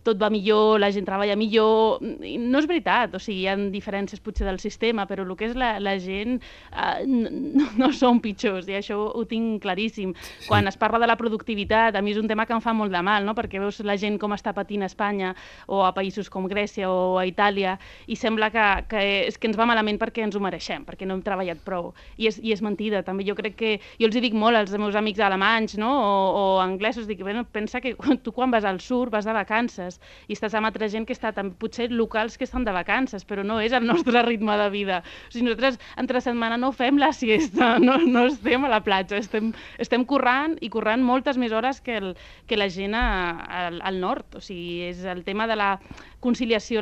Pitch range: 195-230 Hz